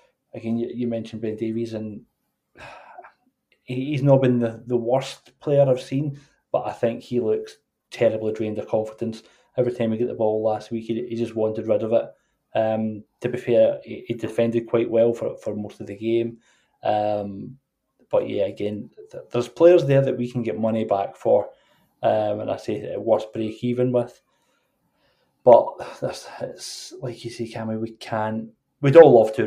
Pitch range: 110-125 Hz